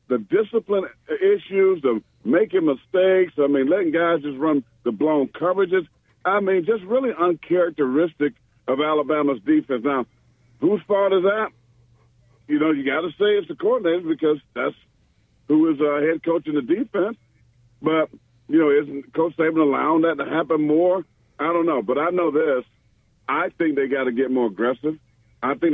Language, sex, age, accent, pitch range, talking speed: English, male, 50-69, American, 130-210 Hz, 175 wpm